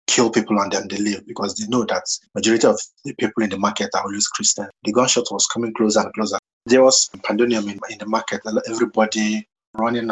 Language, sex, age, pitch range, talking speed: English, male, 20-39, 105-115 Hz, 215 wpm